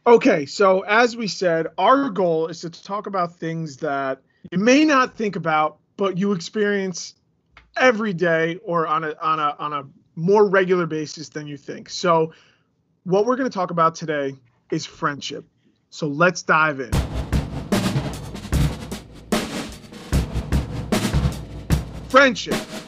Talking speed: 130 wpm